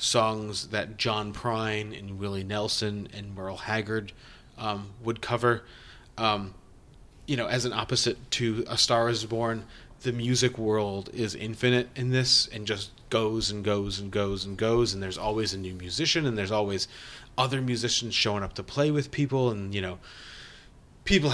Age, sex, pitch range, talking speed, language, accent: 30-49, male, 100-125 Hz, 170 wpm, English, American